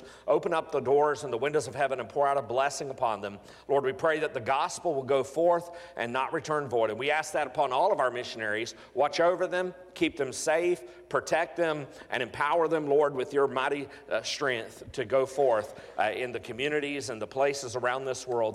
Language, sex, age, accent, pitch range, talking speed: English, male, 40-59, American, 125-160 Hz, 220 wpm